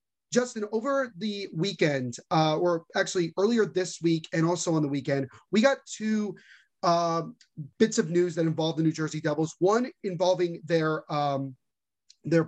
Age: 30-49